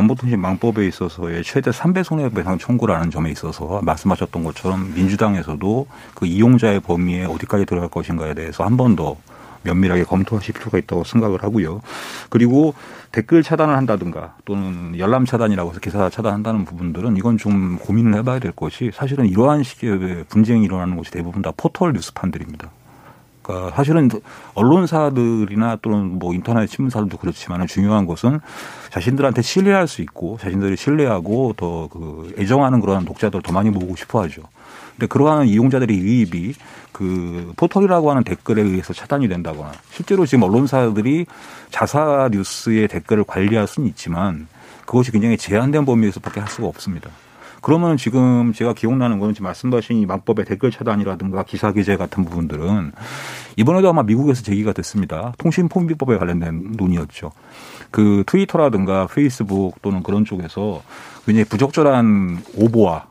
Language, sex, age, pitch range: Korean, male, 40-59, 90-120 Hz